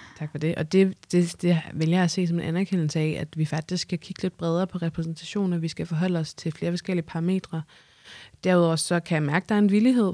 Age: 20-39